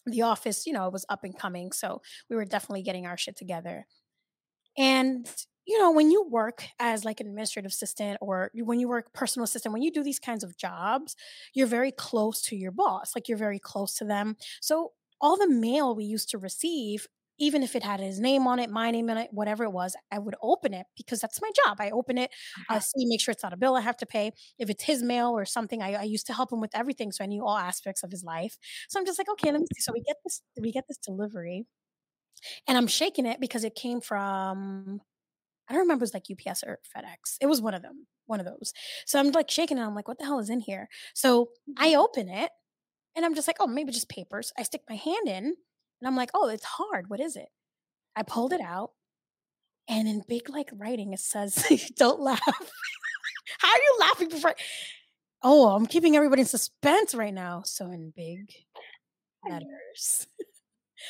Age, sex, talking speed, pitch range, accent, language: 20-39, female, 225 wpm, 205-280 Hz, American, English